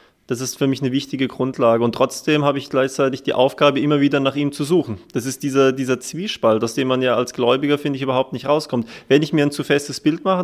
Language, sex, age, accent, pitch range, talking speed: German, male, 20-39, German, 125-150 Hz, 255 wpm